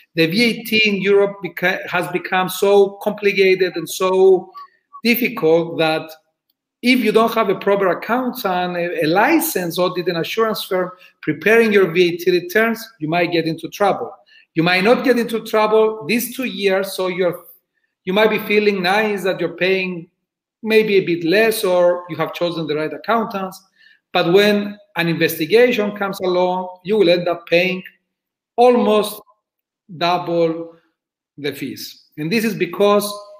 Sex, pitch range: male, 170-215 Hz